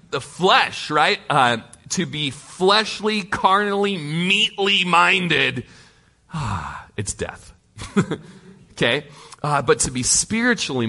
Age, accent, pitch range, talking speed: 30-49, American, 105-155 Hz, 105 wpm